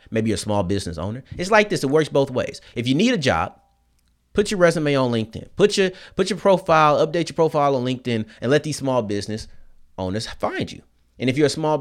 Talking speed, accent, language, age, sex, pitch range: 235 wpm, American, English, 30-49, male, 110-155 Hz